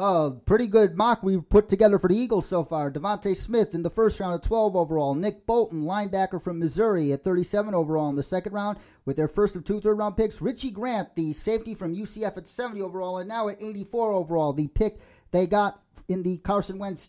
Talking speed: 220 wpm